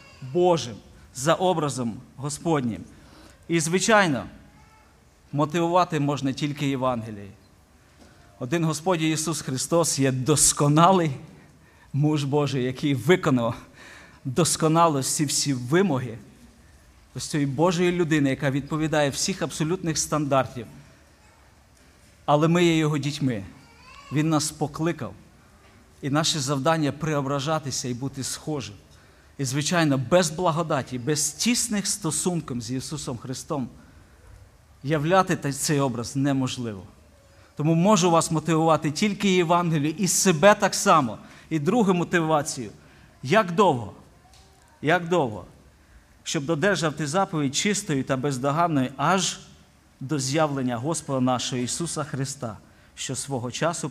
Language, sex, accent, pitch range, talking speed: Ukrainian, male, native, 125-165 Hz, 105 wpm